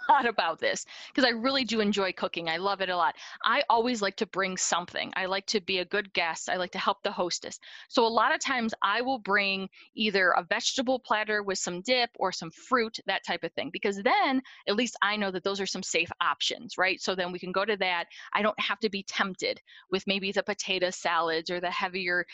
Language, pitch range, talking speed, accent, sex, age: English, 195-245 Hz, 240 wpm, American, female, 20-39